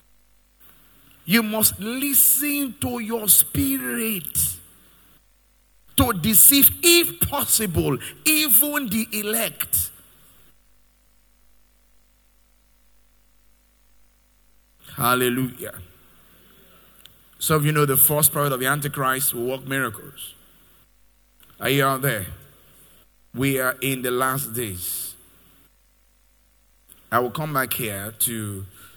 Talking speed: 90 wpm